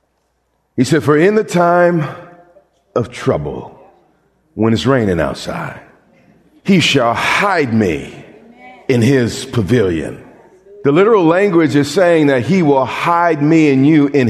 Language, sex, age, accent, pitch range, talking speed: English, male, 40-59, American, 160-255 Hz, 135 wpm